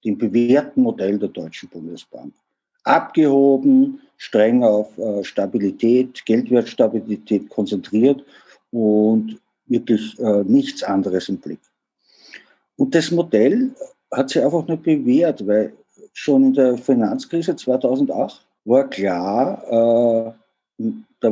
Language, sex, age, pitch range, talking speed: German, male, 50-69, 110-160 Hz, 100 wpm